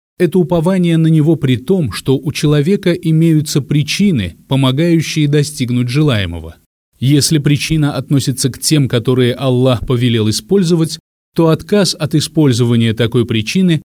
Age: 30-49